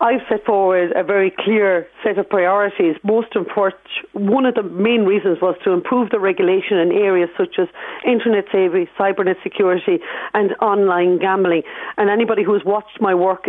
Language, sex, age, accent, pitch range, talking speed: English, female, 40-59, Irish, 185-220 Hz, 175 wpm